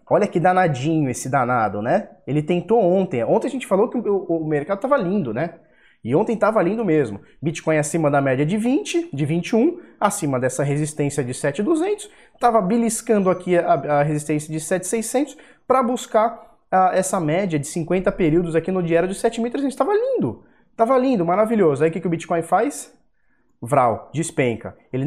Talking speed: 175 wpm